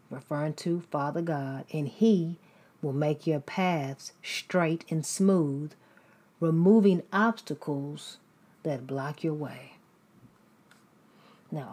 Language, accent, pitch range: English, American, 145-175 Hz